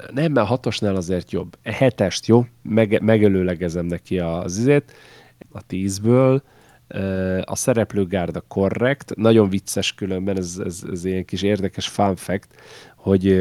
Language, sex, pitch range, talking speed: Hungarian, male, 90-105 Hz, 140 wpm